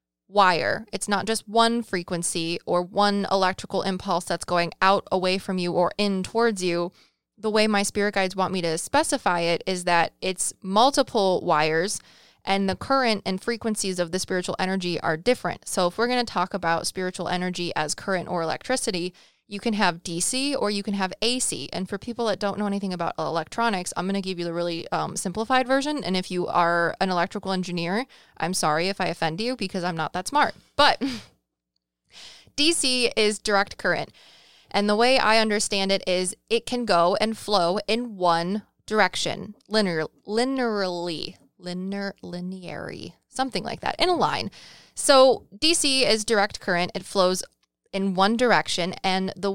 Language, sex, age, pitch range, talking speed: English, female, 20-39, 180-225 Hz, 175 wpm